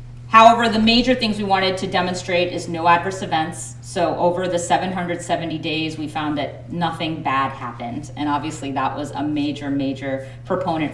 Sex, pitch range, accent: female, 135-195 Hz, American